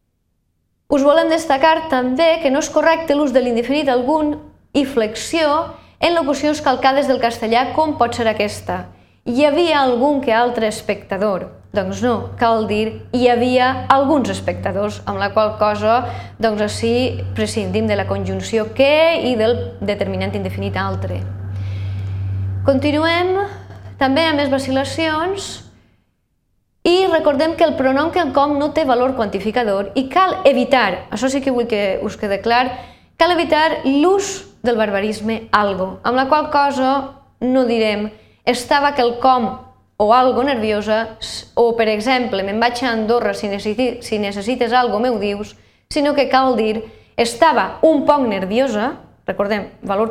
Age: 20-39